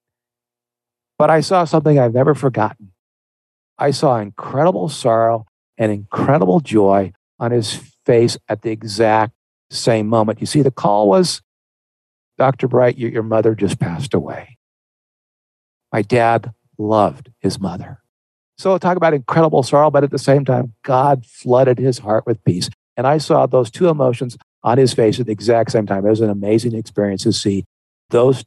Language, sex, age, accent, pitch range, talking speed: English, male, 50-69, American, 110-140 Hz, 165 wpm